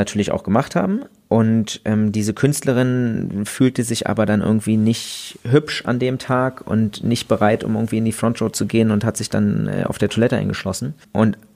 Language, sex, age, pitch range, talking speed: German, male, 30-49, 105-125 Hz, 195 wpm